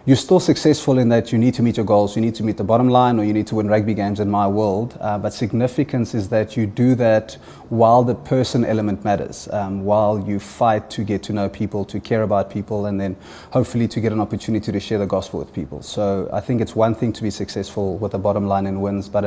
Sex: male